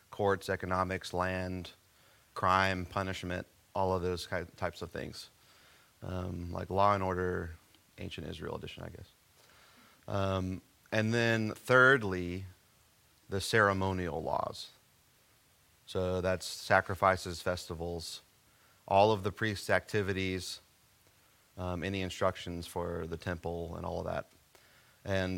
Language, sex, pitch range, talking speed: English, male, 90-100 Hz, 115 wpm